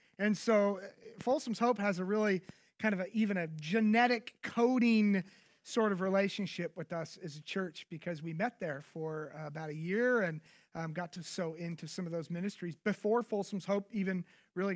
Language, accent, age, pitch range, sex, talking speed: English, American, 30-49, 165-210 Hz, male, 185 wpm